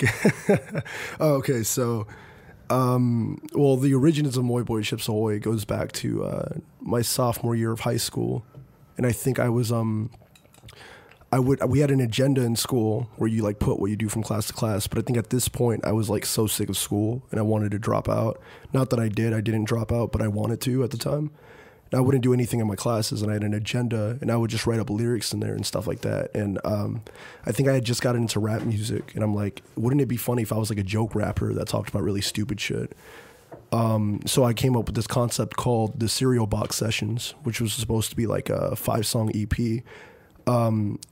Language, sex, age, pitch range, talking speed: English, male, 20-39, 105-125 Hz, 235 wpm